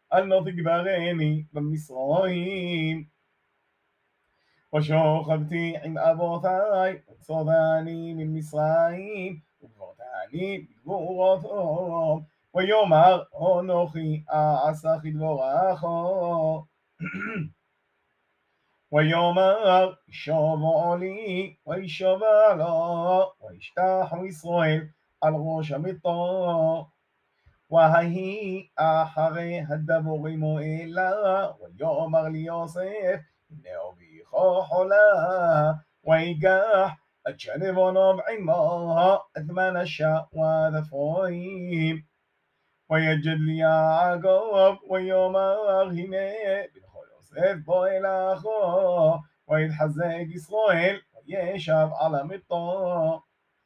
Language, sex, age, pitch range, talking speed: Hebrew, male, 30-49, 155-185 Hz, 45 wpm